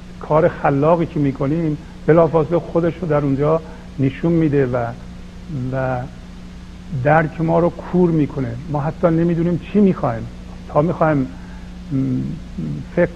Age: 50-69